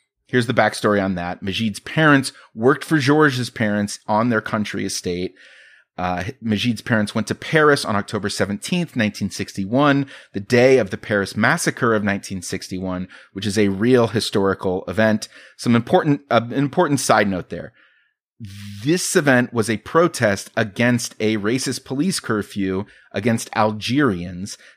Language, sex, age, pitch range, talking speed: English, male, 30-49, 100-130 Hz, 145 wpm